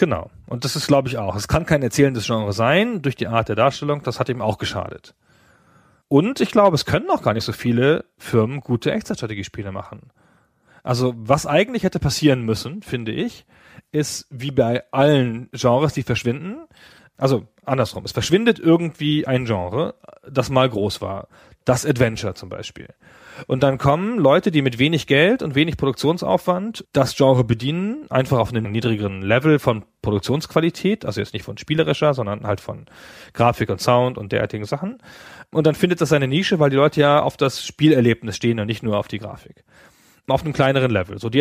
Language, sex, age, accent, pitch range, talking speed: German, male, 30-49, German, 110-150 Hz, 185 wpm